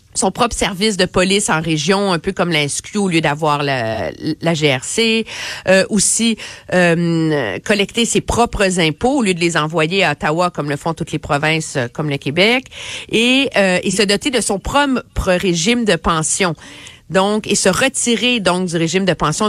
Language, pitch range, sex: French, 160-220 Hz, female